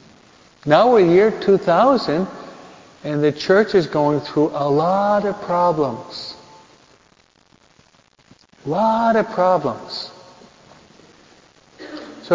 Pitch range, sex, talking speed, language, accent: 140-180 Hz, male, 100 wpm, English, American